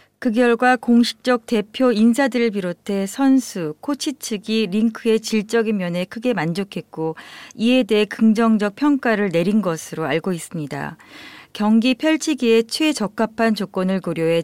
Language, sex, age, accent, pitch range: Korean, female, 40-59, native, 175-230 Hz